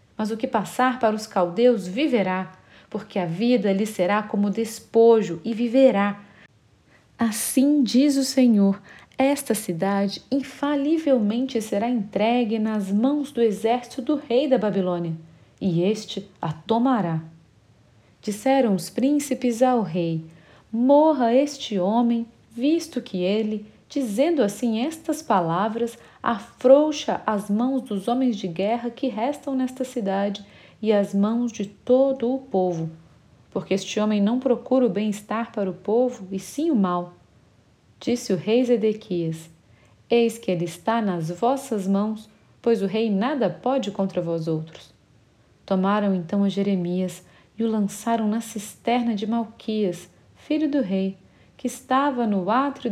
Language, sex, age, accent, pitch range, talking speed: Portuguese, female, 40-59, Brazilian, 190-245 Hz, 140 wpm